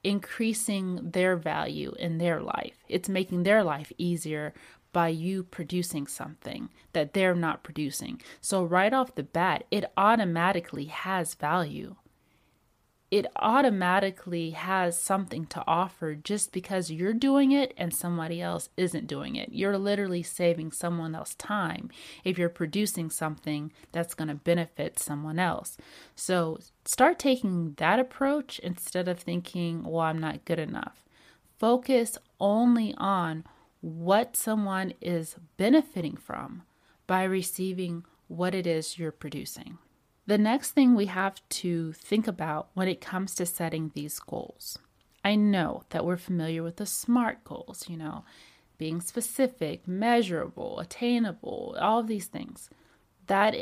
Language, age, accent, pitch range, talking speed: English, 30-49, American, 165-210 Hz, 140 wpm